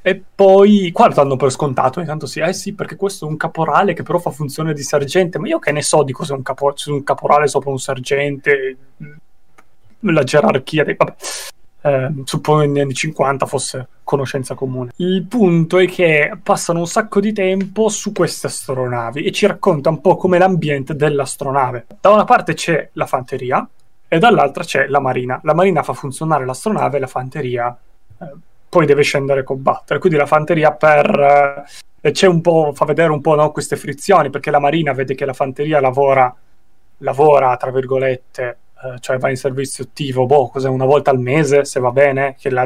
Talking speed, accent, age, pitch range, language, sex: 185 wpm, native, 20-39, 135-160 Hz, Italian, male